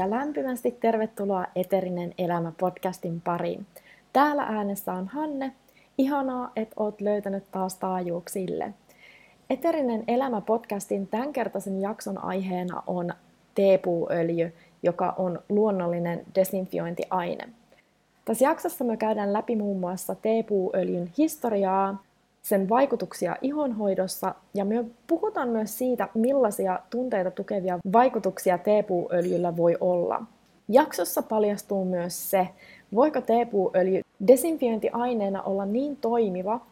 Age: 30-49